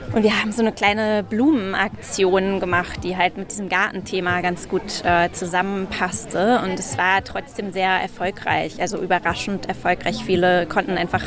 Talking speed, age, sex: 155 wpm, 20-39, female